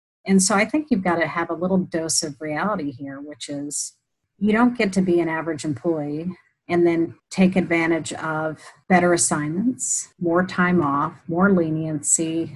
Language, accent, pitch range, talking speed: English, American, 150-180 Hz, 170 wpm